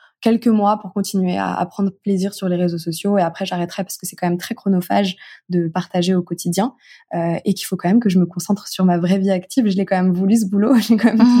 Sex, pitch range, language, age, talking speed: female, 180-210 Hz, French, 20-39, 275 wpm